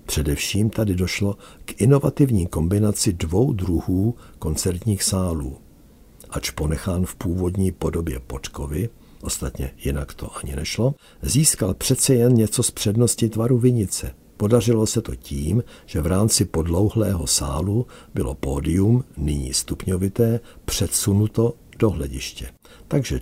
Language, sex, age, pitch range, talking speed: Czech, male, 60-79, 75-105 Hz, 120 wpm